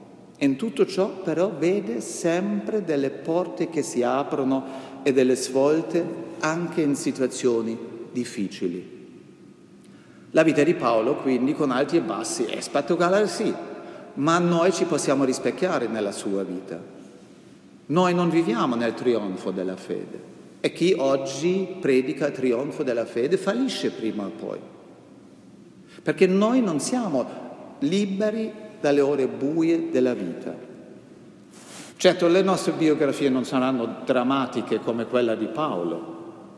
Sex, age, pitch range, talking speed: male, 50-69, 125-180 Hz, 130 wpm